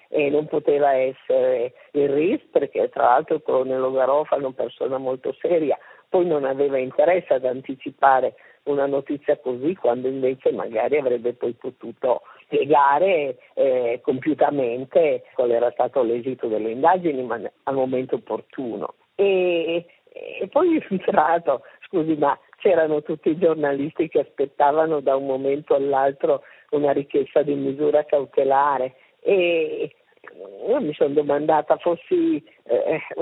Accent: native